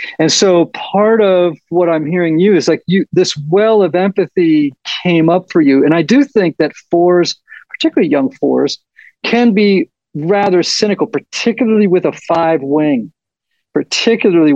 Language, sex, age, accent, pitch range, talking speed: English, male, 50-69, American, 160-205 Hz, 155 wpm